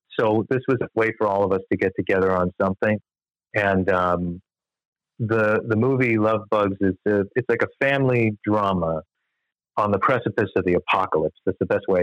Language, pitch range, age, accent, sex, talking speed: English, 95-115 Hz, 40-59, American, male, 190 wpm